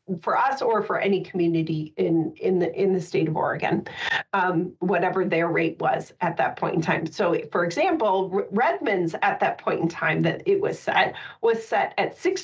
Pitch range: 175-220 Hz